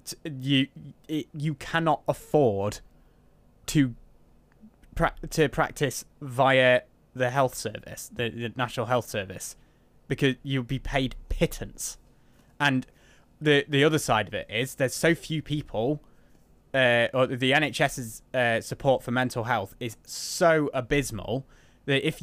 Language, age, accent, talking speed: English, 20-39, British, 130 wpm